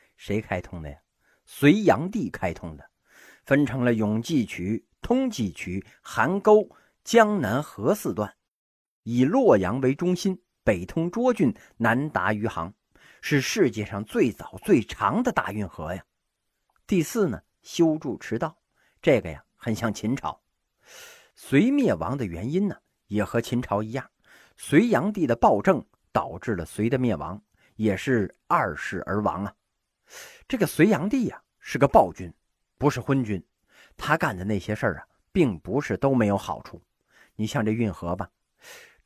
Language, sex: Chinese, male